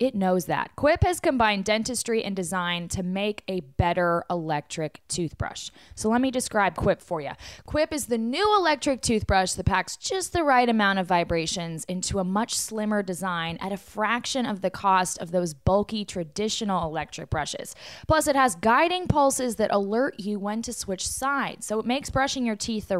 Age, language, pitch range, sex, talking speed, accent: 20-39, English, 185-255 Hz, female, 190 wpm, American